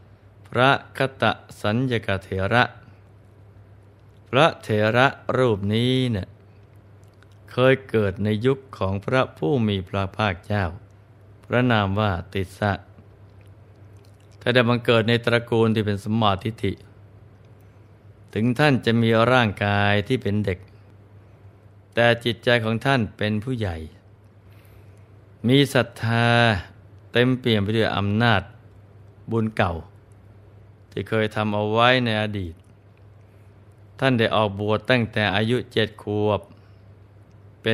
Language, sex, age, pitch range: Thai, male, 20-39, 100-115 Hz